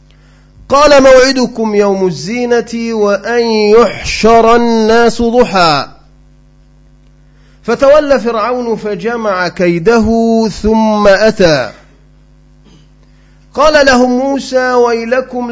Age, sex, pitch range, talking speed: 40-59, male, 195-245 Hz, 70 wpm